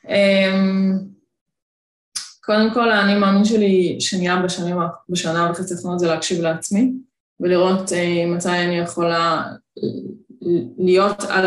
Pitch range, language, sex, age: 175-200 Hz, Hebrew, female, 20-39